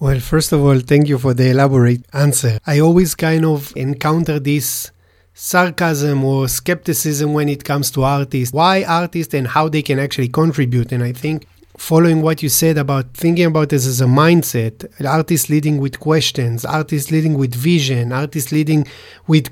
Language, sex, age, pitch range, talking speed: English, male, 30-49, 135-170 Hz, 175 wpm